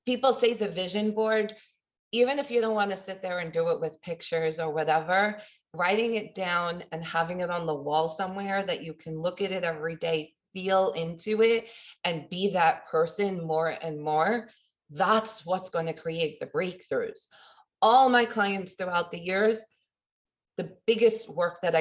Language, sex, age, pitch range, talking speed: English, female, 20-39, 165-220 Hz, 180 wpm